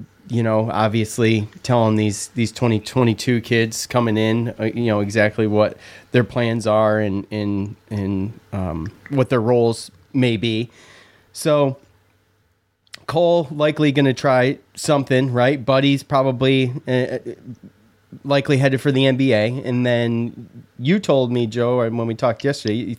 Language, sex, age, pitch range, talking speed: English, male, 30-49, 105-130 Hz, 135 wpm